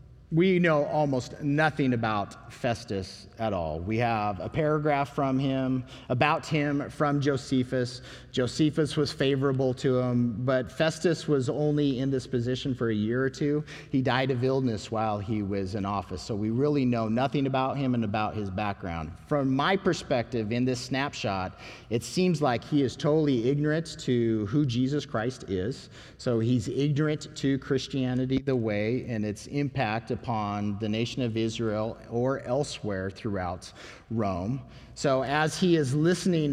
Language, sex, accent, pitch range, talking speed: English, male, American, 115-150 Hz, 160 wpm